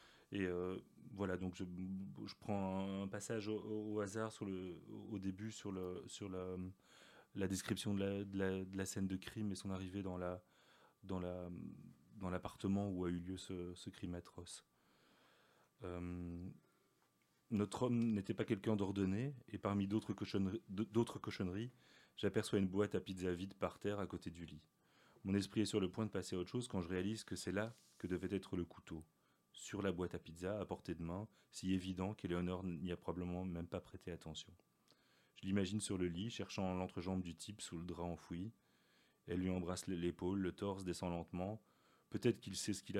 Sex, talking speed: male, 195 wpm